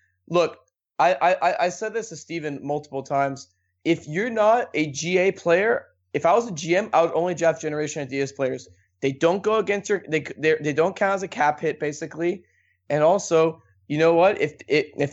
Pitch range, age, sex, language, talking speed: 135-170 Hz, 20-39, male, English, 200 wpm